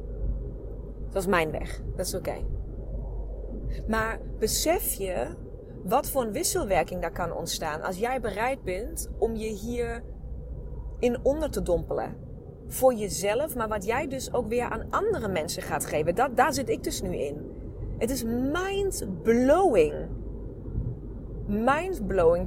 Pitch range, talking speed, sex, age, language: 200-270 Hz, 140 wpm, female, 30-49, Dutch